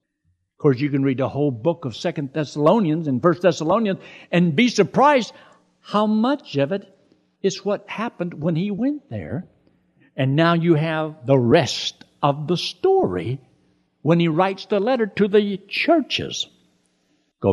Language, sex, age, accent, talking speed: English, male, 60-79, American, 160 wpm